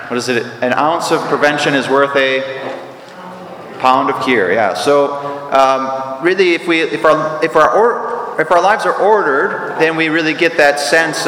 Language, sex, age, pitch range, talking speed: English, male, 30-49, 130-155 Hz, 185 wpm